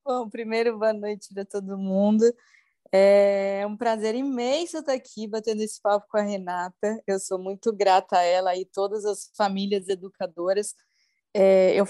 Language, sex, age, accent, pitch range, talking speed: Portuguese, female, 20-39, Brazilian, 195-225 Hz, 155 wpm